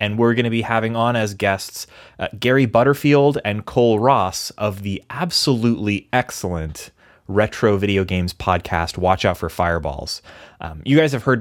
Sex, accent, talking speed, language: male, American, 170 wpm, English